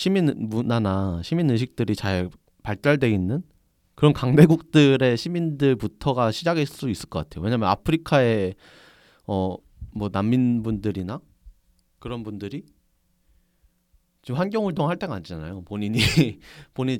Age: 30-49